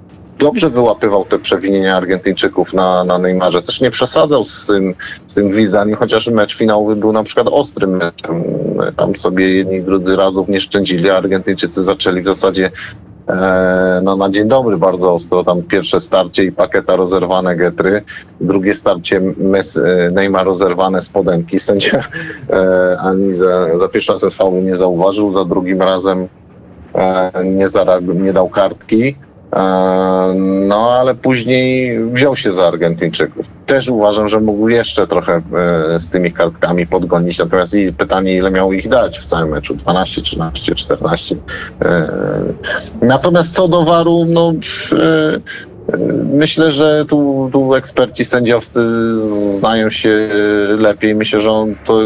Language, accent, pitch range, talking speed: Polish, native, 95-115 Hz, 145 wpm